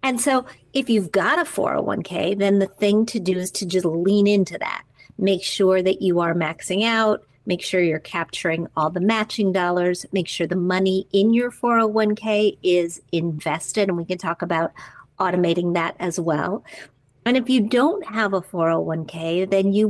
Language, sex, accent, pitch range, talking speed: English, female, American, 165-205 Hz, 180 wpm